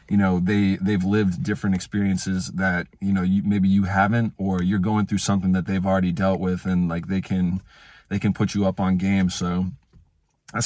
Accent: American